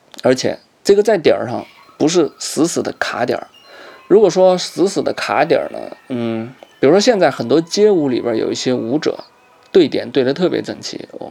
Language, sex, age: Chinese, male, 20-39